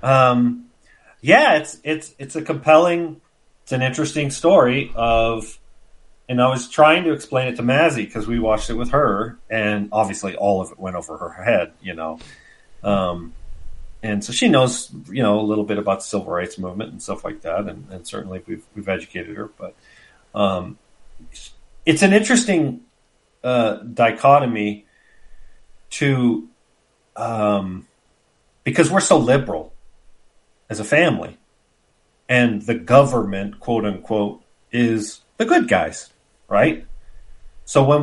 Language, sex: English, male